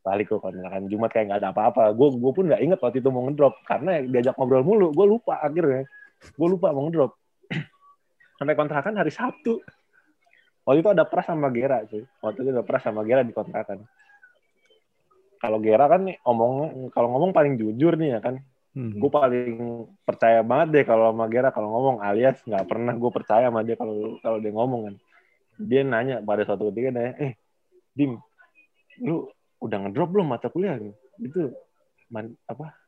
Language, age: Indonesian, 20-39